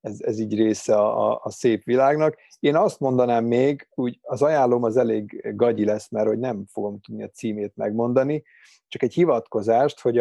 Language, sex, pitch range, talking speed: Hungarian, male, 105-125 Hz, 180 wpm